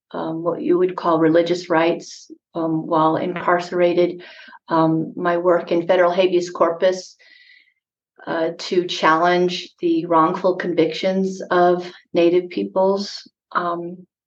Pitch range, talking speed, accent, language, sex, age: 165-180 Hz, 115 wpm, American, English, female, 40-59